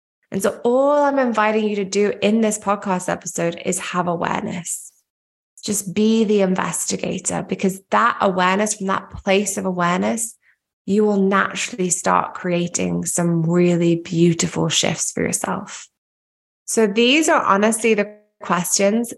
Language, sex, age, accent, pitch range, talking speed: English, female, 20-39, British, 170-215 Hz, 140 wpm